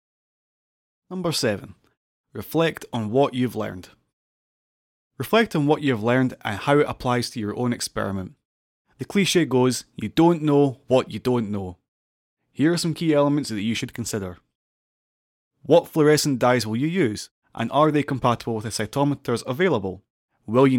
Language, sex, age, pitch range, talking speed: English, male, 20-39, 110-150 Hz, 160 wpm